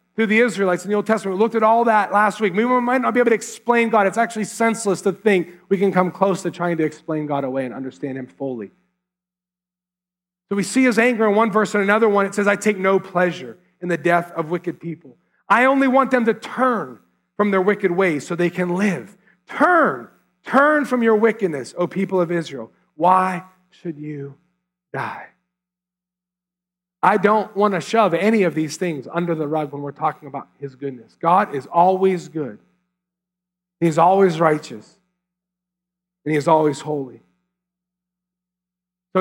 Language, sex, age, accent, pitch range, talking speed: English, male, 40-59, American, 170-205 Hz, 185 wpm